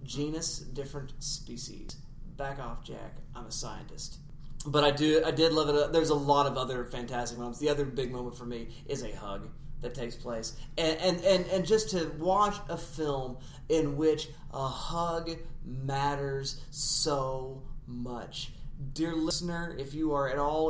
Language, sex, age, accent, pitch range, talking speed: English, male, 30-49, American, 135-155 Hz, 170 wpm